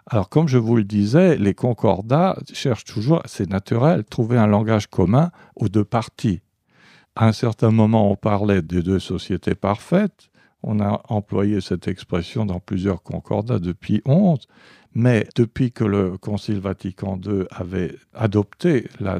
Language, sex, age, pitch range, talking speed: French, male, 50-69, 100-135 Hz, 155 wpm